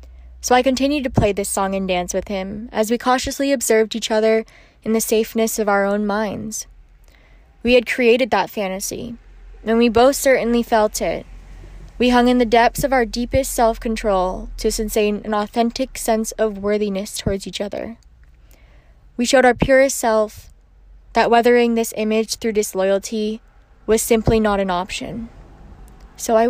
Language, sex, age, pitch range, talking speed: English, female, 20-39, 190-235 Hz, 165 wpm